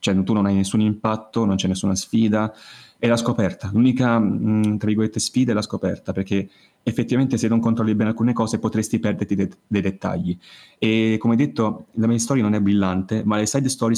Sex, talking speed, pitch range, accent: male, 200 wpm, 100-115 Hz, native